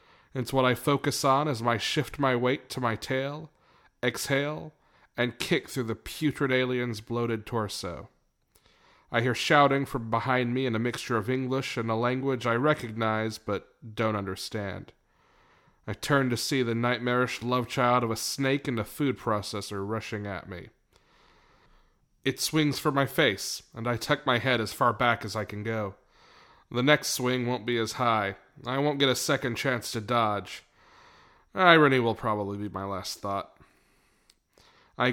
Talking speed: 170 wpm